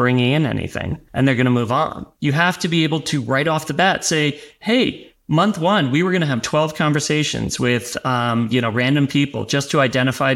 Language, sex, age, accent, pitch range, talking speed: English, male, 30-49, American, 130-165 Hz, 225 wpm